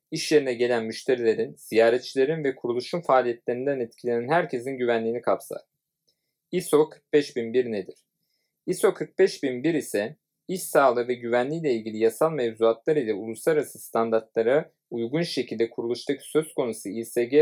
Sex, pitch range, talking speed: male, 120-160 Hz, 120 wpm